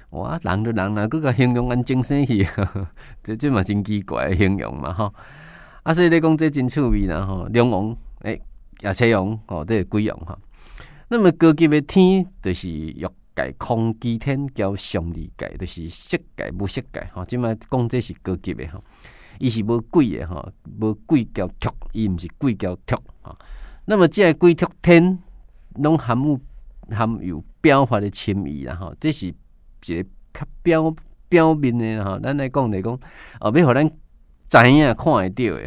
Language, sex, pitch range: Chinese, male, 90-130 Hz